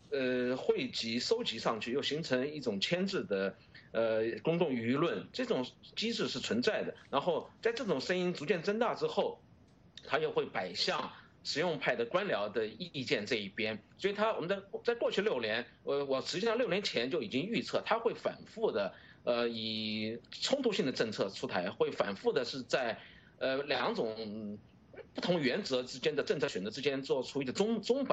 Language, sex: English, male